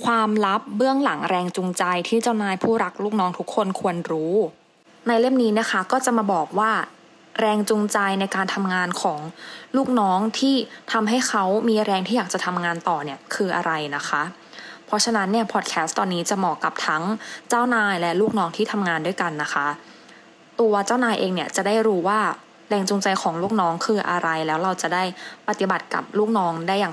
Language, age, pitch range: English, 20-39, 170-220 Hz